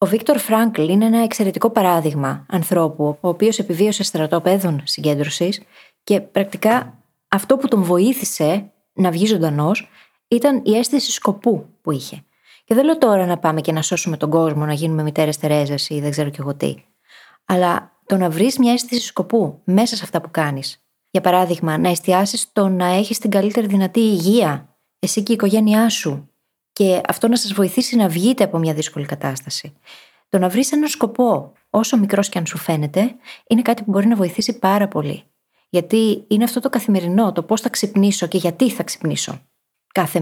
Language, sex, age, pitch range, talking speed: Greek, female, 20-39, 165-220 Hz, 180 wpm